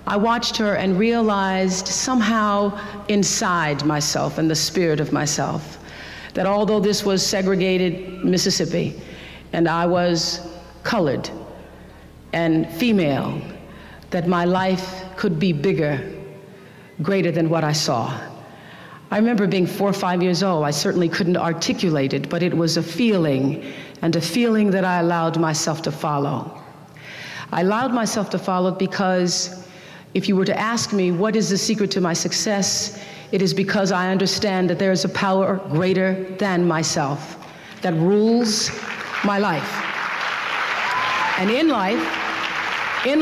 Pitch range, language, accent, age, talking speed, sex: 165-200 Hz, English, American, 50-69, 145 wpm, female